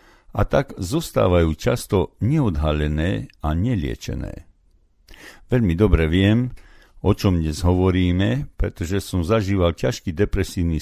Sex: male